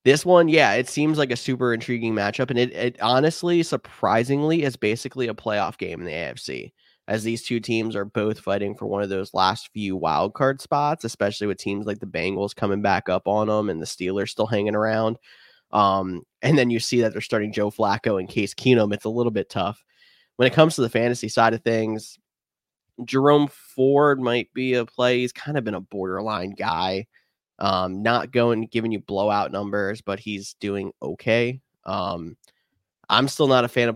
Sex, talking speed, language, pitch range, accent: male, 200 wpm, English, 105-120 Hz, American